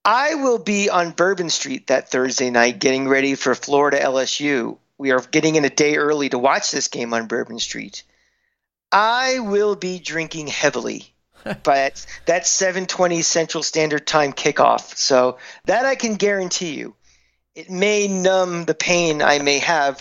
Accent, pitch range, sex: American, 140-185 Hz, male